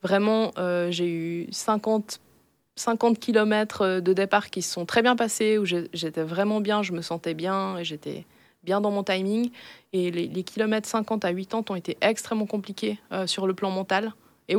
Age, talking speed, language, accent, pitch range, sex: 20-39, 190 wpm, French, French, 180-215 Hz, female